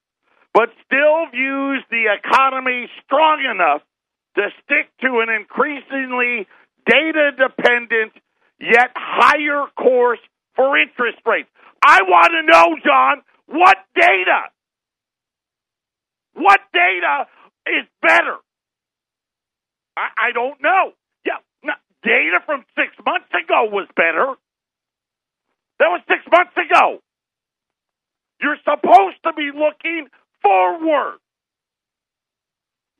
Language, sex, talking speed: English, male, 95 wpm